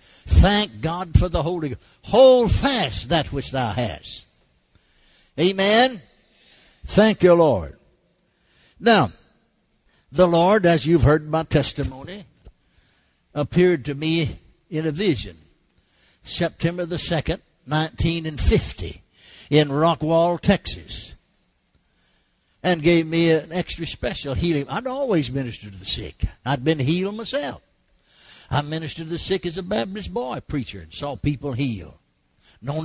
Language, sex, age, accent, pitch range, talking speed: English, male, 60-79, American, 120-180 Hz, 125 wpm